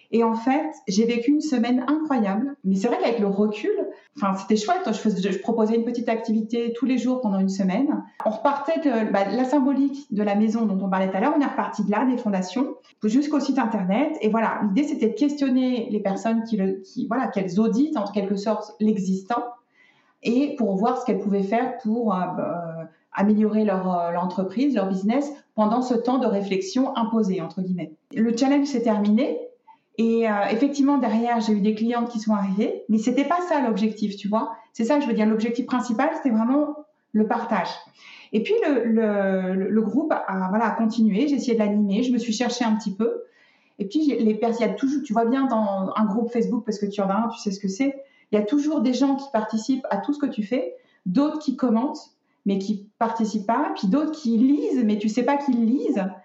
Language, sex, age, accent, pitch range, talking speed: French, female, 40-59, French, 210-270 Hz, 225 wpm